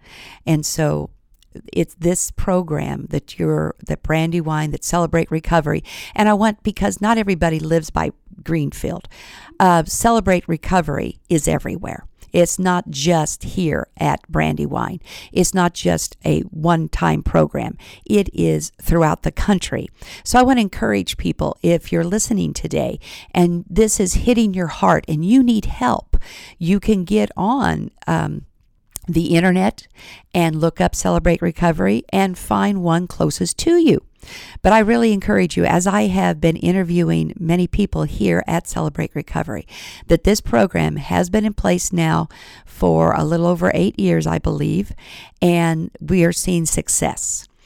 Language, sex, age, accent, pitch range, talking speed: English, female, 50-69, American, 155-200 Hz, 150 wpm